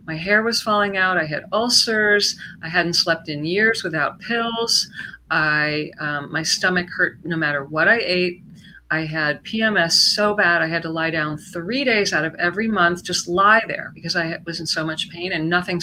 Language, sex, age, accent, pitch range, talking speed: English, female, 40-59, American, 165-200 Hz, 200 wpm